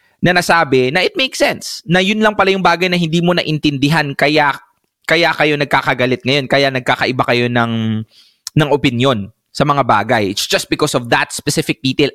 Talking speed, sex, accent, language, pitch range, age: 190 wpm, male, Filipino, English, 130-170 Hz, 20-39